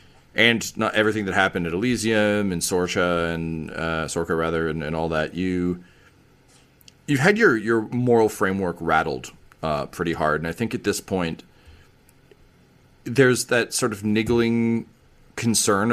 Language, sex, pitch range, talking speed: English, male, 85-115 Hz, 155 wpm